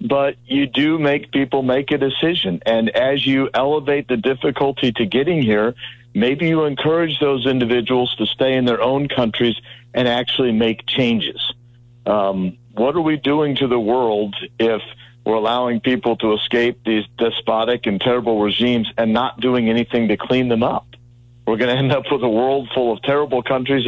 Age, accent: 50-69, American